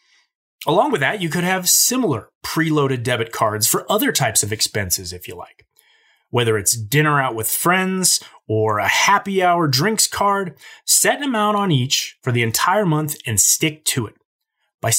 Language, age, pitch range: English, 30-49, 120-190 Hz